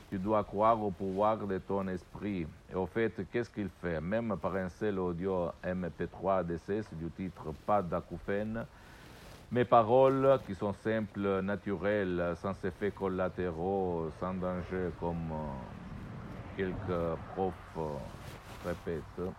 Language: Italian